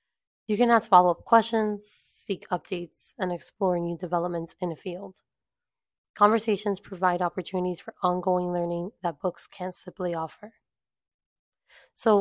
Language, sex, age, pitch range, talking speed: English, female, 20-39, 175-200 Hz, 130 wpm